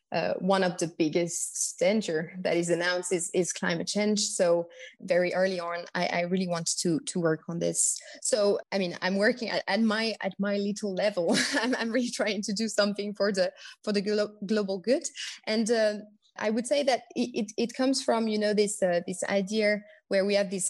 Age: 20-39